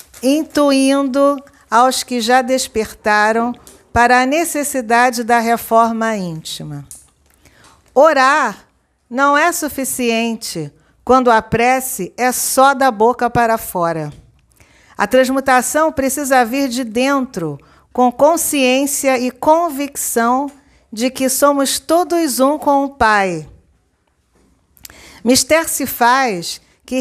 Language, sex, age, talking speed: Portuguese, female, 50-69, 100 wpm